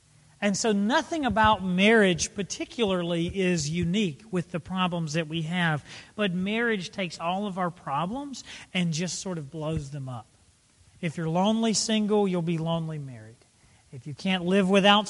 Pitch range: 160-205 Hz